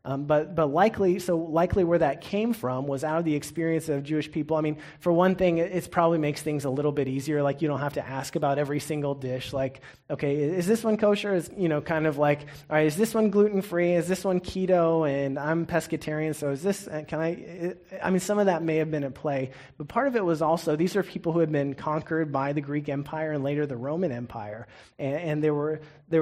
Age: 30-49